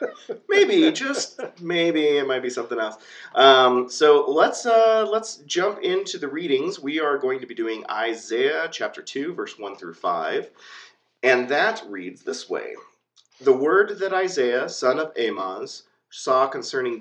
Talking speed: 150 wpm